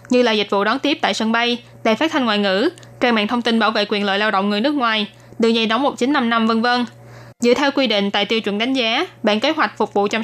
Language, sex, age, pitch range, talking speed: Vietnamese, female, 20-39, 215-265 Hz, 285 wpm